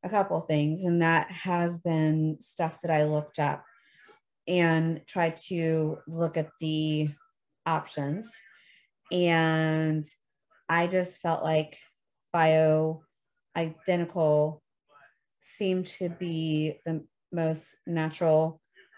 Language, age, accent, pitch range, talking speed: English, 30-49, American, 155-180 Hz, 105 wpm